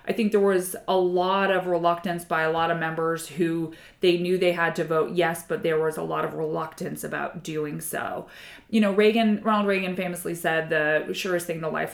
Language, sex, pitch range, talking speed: English, female, 165-185 Hz, 215 wpm